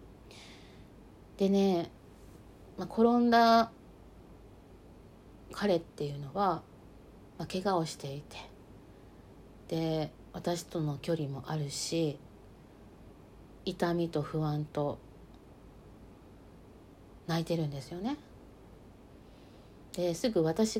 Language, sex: Japanese, female